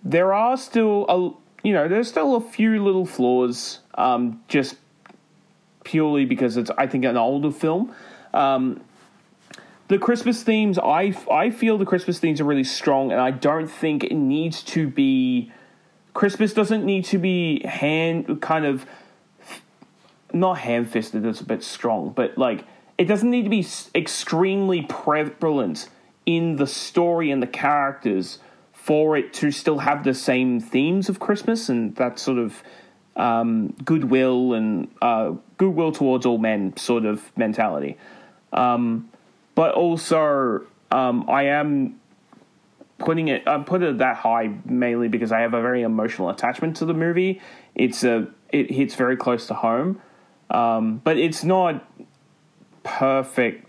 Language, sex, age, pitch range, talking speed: English, male, 30-49, 125-190 Hz, 150 wpm